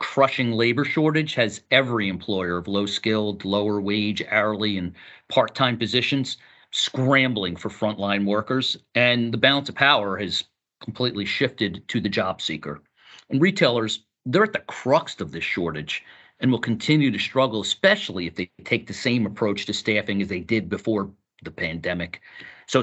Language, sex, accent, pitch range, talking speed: English, male, American, 100-125 Hz, 165 wpm